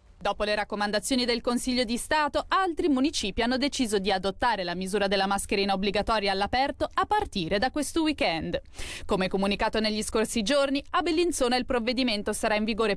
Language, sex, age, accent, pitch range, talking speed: Italian, female, 20-39, native, 195-265 Hz, 165 wpm